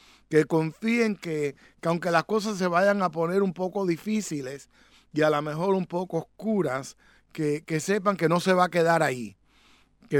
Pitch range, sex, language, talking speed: 150-185 Hz, male, English, 190 wpm